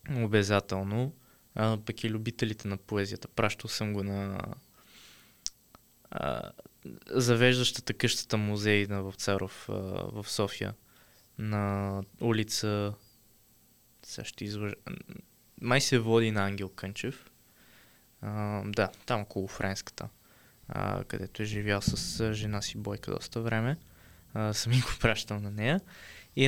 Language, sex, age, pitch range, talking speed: Bulgarian, male, 20-39, 100-120 Hz, 115 wpm